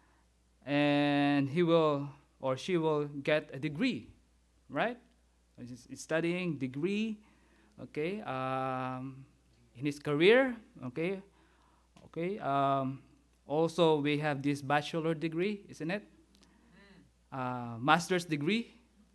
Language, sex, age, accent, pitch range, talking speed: English, male, 20-39, Filipino, 130-170 Hz, 100 wpm